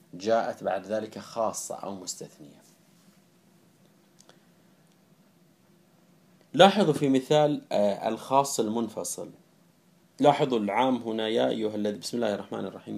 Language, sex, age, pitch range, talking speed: Arabic, male, 30-49, 105-165 Hz, 95 wpm